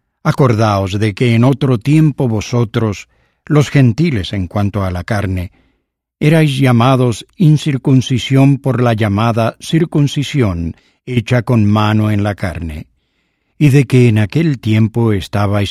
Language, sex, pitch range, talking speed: English, male, 105-135 Hz, 130 wpm